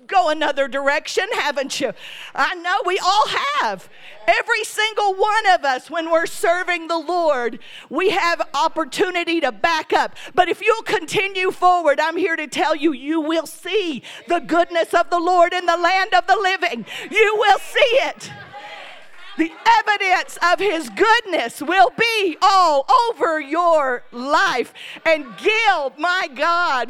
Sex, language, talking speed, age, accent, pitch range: female, English, 155 wpm, 50-69, American, 280-370 Hz